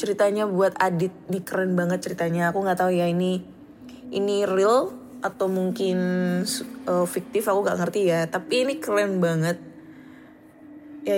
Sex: female